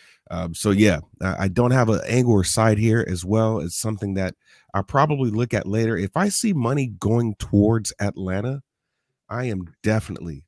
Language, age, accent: English, 30-49, American